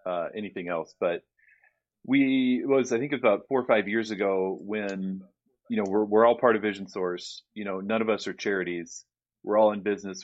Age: 30-49